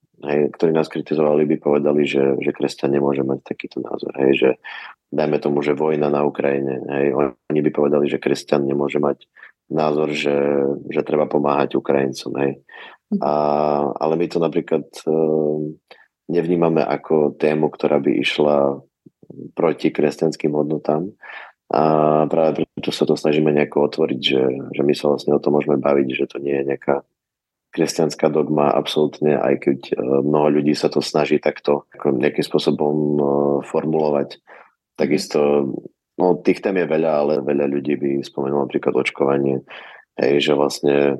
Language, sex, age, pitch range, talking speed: Slovak, male, 20-39, 70-75 Hz, 150 wpm